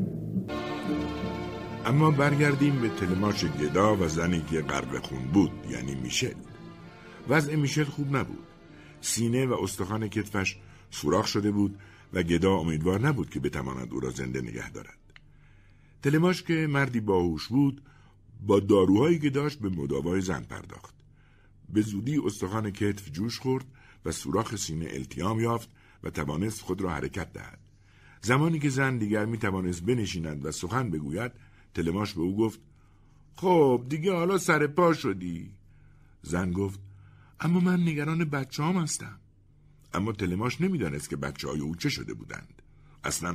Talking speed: 140 wpm